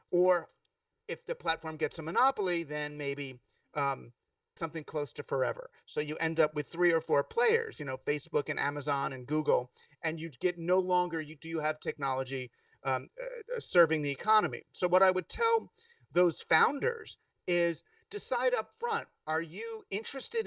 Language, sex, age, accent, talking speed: English, male, 40-59, American, 170 wpm